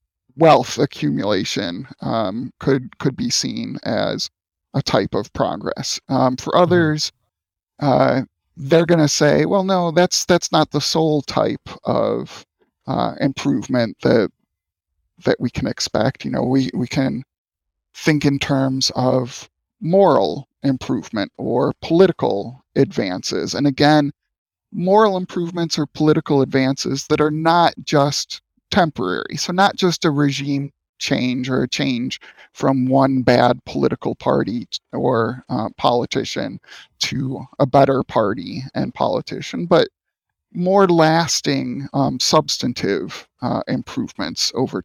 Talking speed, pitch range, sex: 125 wpm, 135-165 Hz, male